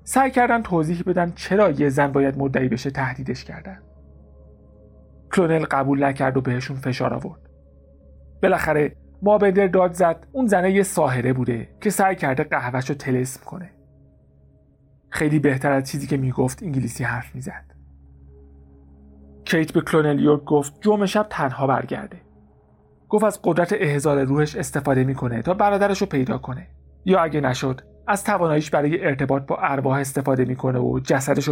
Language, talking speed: Persian, 150 wpm